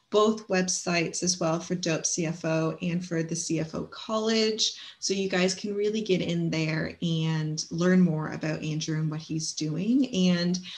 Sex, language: female, English